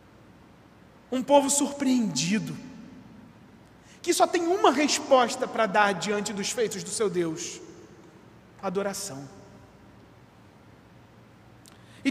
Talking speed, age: 90 wpm, 40-59